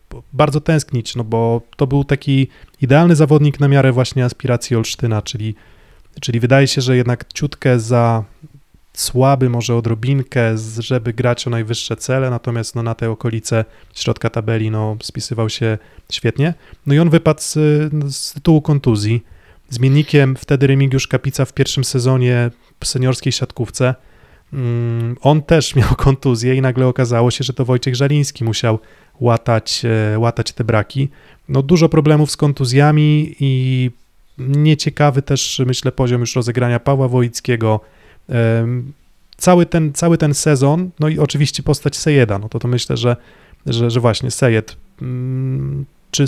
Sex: male